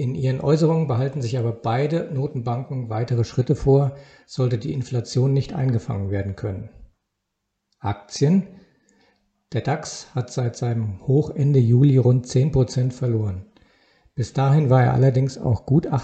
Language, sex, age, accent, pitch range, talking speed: German, male, 50-69, German, 115-140 Hz, 135 wpm